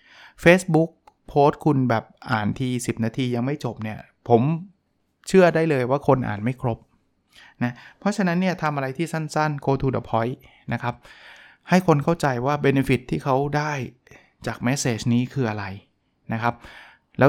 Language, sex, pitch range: Thai, male, 120-155 Hz